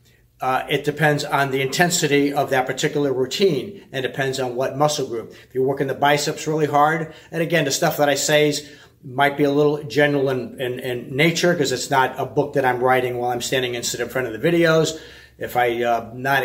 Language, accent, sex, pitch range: English, American, male, 125-145 Hz